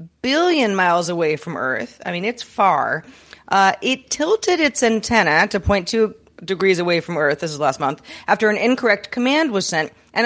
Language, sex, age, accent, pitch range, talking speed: English, female, 40-59, American, 170-255 Hz, 185 wpm